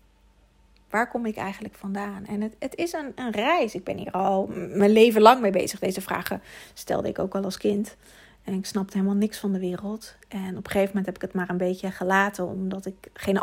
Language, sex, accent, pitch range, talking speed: Dutch, female, Dutch, 195-230 Hz, 230 wpm